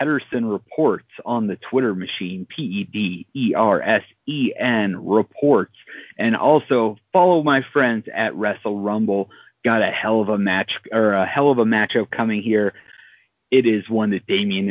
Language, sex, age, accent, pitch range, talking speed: English, male, 30-49, American, 105-140 Hz, 140 wpm